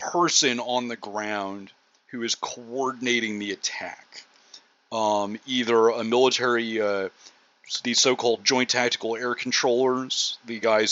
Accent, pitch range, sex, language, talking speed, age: American, 110-130 Hz, male, English, 120 wpm, 30-49